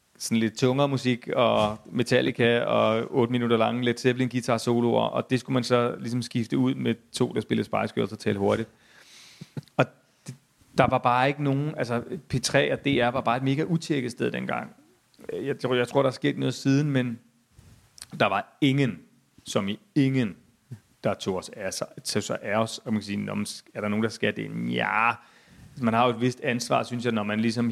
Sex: male